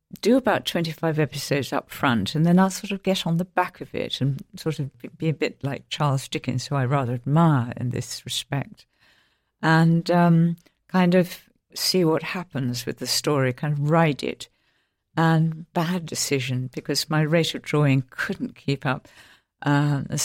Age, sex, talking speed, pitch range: 60-79, female, 175 wpm, 135-170 Hz